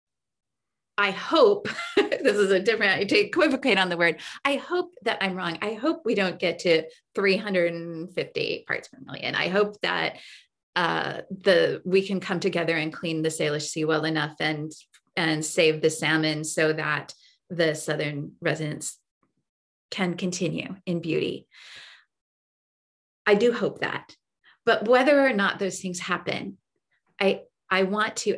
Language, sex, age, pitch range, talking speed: English, female, 30-49, 165-210 Hz, 150 wpm